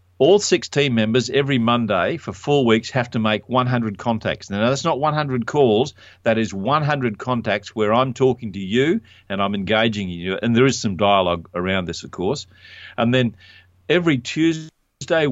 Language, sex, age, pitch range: English, male, 50-69, 100-130 Hz